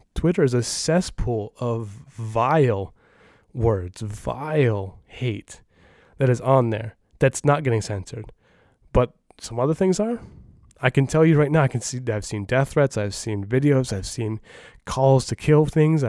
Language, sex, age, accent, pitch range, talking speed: English, male, 20-39, American, 115-145 Hz, 165 wpm